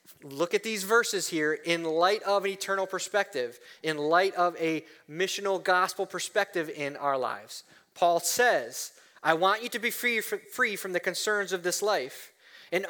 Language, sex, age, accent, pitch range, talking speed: English, male, 30-49, American, 155-210 Hz, 170 wpm